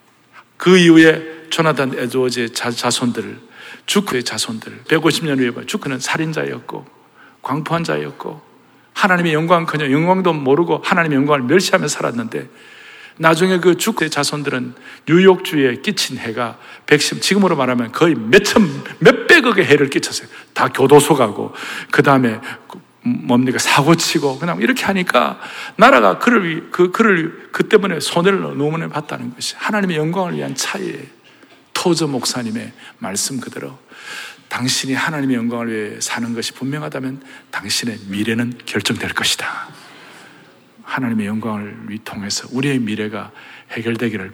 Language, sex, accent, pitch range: Korean, male, native, 125-180 Hz